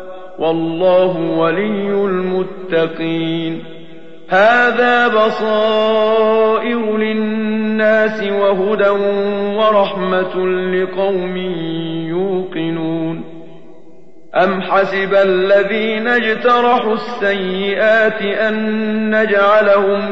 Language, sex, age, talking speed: Arabic, male, 40-59, 50 wpm